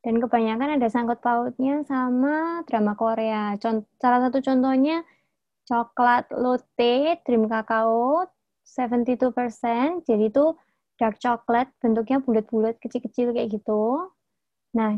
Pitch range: 230-280 Hz